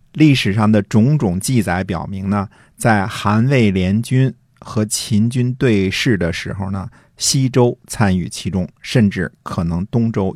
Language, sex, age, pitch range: Chinese, male, 50-69, 95-125 Hz